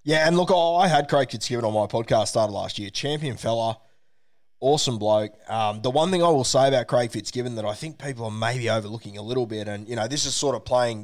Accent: Australian